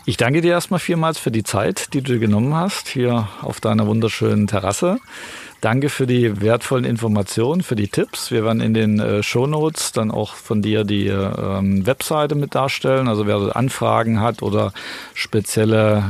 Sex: male